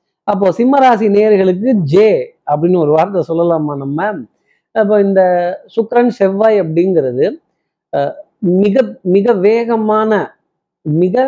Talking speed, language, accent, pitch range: 95 wpm, Tamil, native, 155-205 Hz